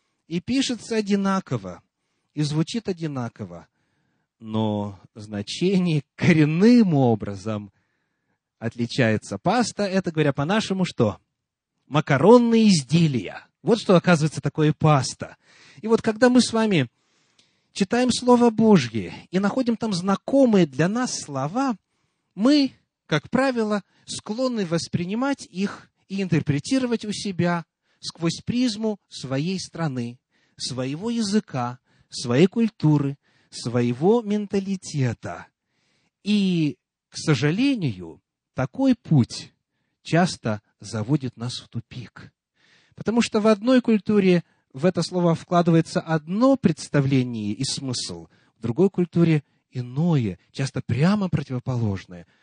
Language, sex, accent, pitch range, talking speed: Russian, male, native, 130-210 Hz, 100 wpm